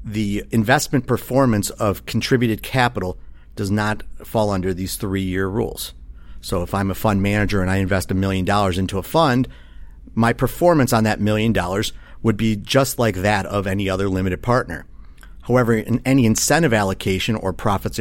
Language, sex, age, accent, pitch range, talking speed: English, male, 50-69, American, 90-115 Hz, 165 wpm